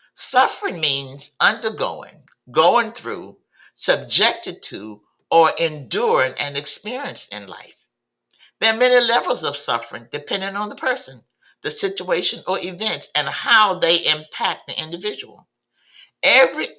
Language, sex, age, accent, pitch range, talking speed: English, male, 50-69, American, 145-220 Hz, 120 wpm